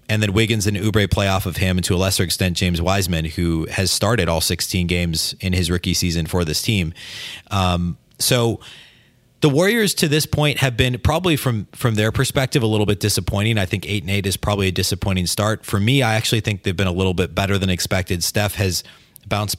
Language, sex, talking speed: English, male, 225 wpm